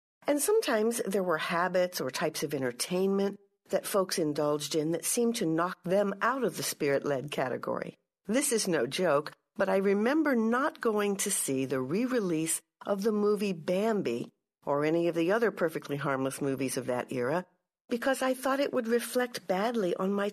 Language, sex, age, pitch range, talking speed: English, female, 60-79, 150-230 Hz, 175 wpm